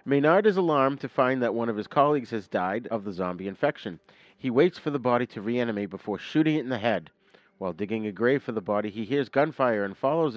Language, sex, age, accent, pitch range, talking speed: English, male, 40-59, American, 110-135 Hz, 235 wpm